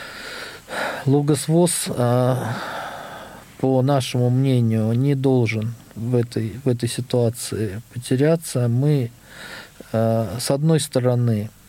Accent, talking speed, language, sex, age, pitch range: native, 75 wpm, Russian, male, 50-69, 115-135 Hz